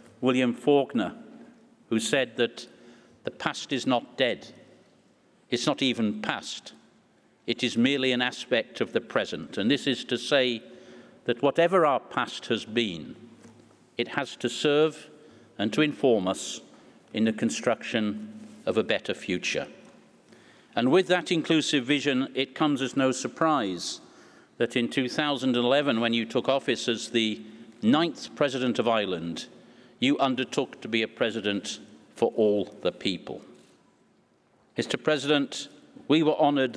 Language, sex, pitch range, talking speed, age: English, male, 115-145 Hz, 140 wpm, 50-69